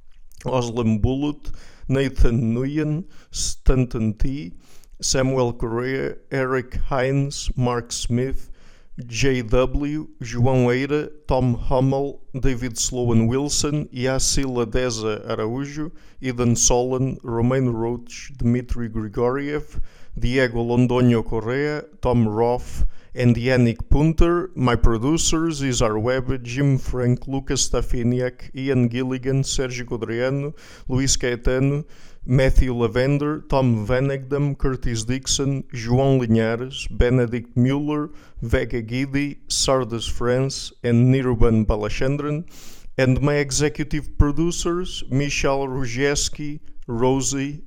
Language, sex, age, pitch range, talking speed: English, male, 50-69, 120-140 Hz, 95 wpm